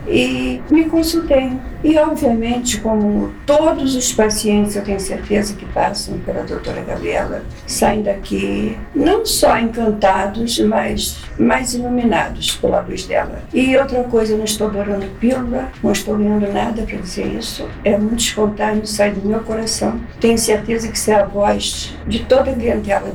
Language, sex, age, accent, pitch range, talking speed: Portuguese, female, 50-69, Brazilian, 200-255 Hz, 160 wpm